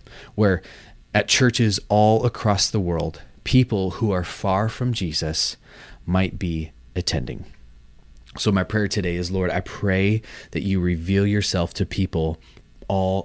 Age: 30-49